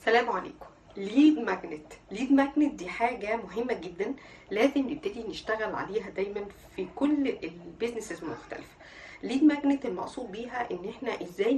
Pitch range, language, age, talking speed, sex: 205-280 Hz, Arabic, 50-69, 135 wpm, female